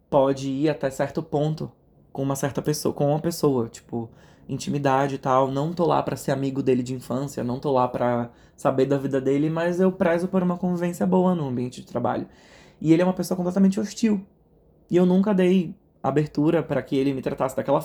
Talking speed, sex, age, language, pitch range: 210 wpm, male, 20-39, Portuguese, 130-170 Hz